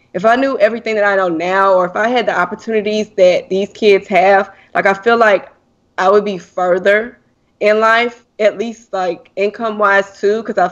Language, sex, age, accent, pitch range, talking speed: English, female, 20-39, American, 185-215 Hz, 200 wpm